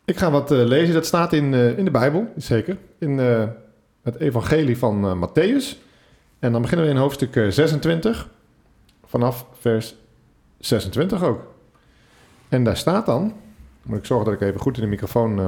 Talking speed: 180 wpm